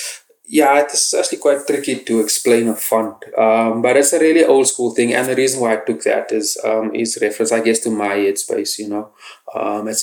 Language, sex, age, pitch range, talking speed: English, male, 20-39, 105-130 Hz, 220 wpm